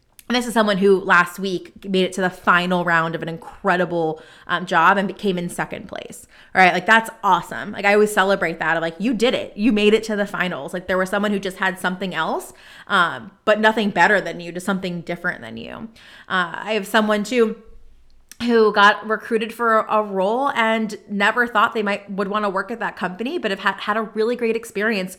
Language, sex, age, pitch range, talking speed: English, female, 20-39, 180-225 Hz, 225 wpm